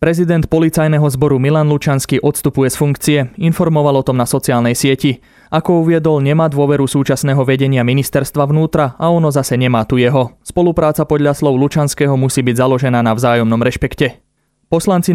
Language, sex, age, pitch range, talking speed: Slovak, male, 20-39, 130-150 Hz, 155 wpm